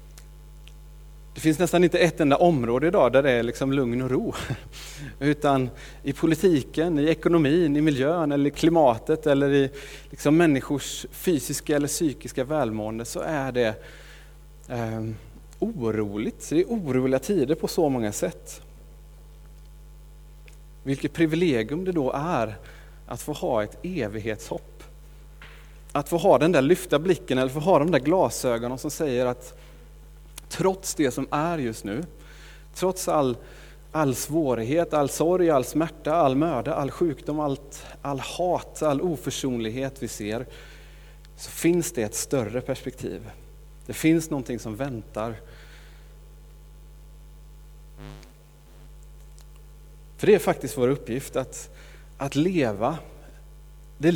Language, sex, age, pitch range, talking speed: Swedish, male, 30-49, 130-155 Hz, 130 wpm